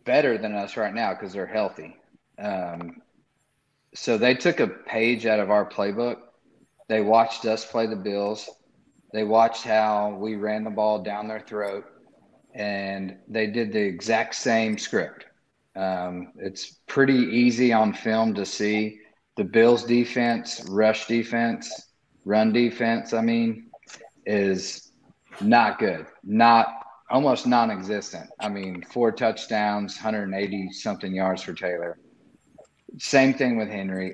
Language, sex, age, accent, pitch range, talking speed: English, male, 40-59, American, 105-120 Hz, 135 wpm